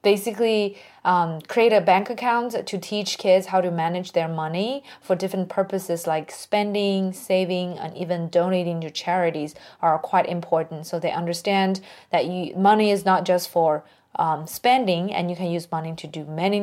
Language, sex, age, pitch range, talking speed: English, female, 20-39, 175-210 Hz, 170 wpm